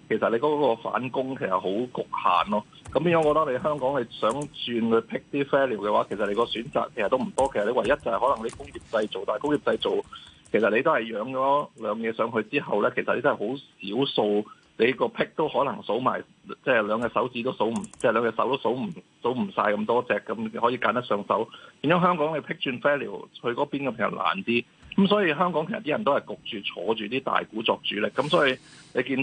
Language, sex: Chinese, male